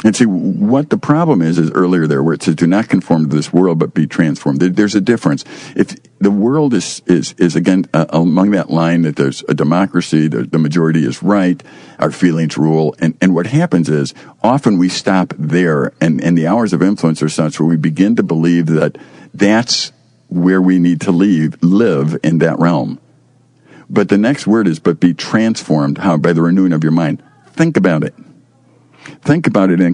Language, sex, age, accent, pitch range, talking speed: English, male, 50-69, American, 80-95 Hz, 205 wpm